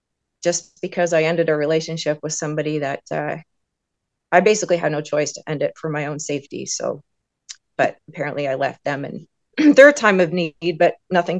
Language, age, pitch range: English, 30-49, 155-190 Hz